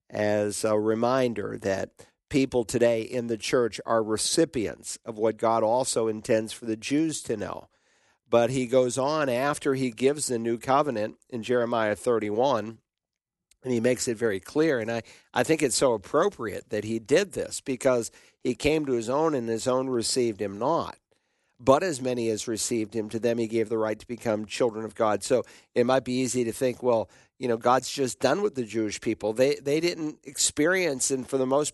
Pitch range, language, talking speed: 110-130 Hz, English, 200 wpm